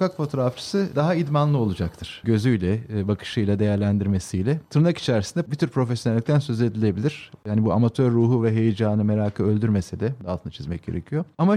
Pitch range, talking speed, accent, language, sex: 110-155 Hz, 140 wpm, native, Turkish, male